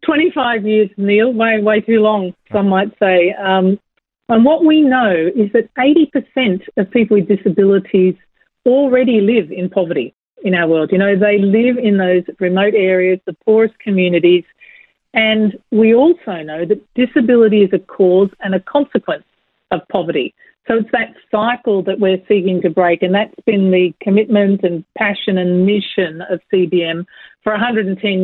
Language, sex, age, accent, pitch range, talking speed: English, female, 40-59, Australian, 190-230 Hz, 160 wpm